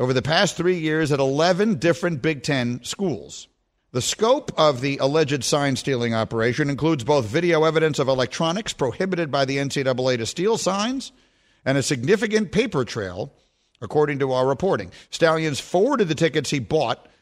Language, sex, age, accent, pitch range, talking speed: English, male, 50-69, American, 125-165 Hz, 165 wpm